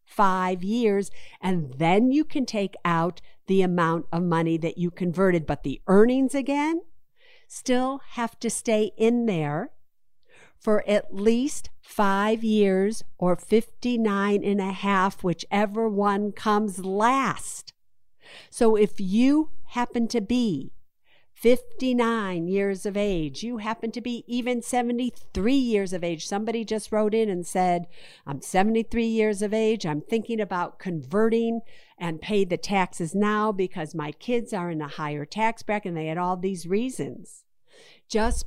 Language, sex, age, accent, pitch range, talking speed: English, female, 50-69, American, 185-230 Hz, 145 wpm